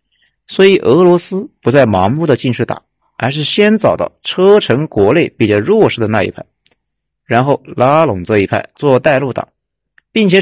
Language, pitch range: Chinese, 110-175 Hz